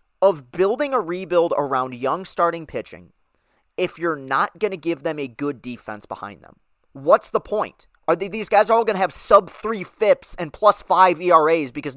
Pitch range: 135-185 Hz